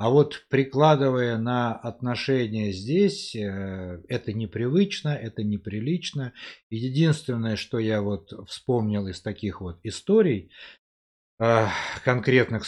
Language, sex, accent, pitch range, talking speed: Russian, male, native, 105-130 Hz, 95 wpm